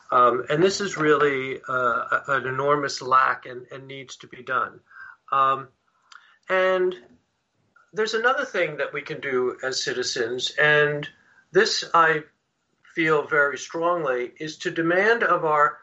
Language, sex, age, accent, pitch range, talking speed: English, male, 50-69, American, 145-190 Hz, 140 wpm